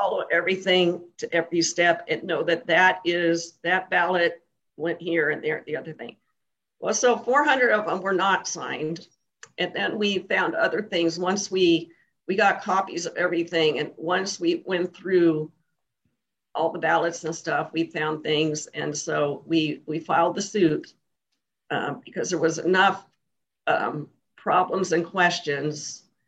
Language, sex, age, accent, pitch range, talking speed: English, female, 50-69, American, 160-190 Hz, 160 wpm